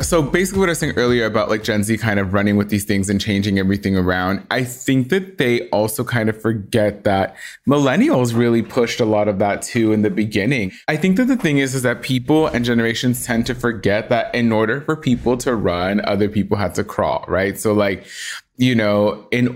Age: 20-39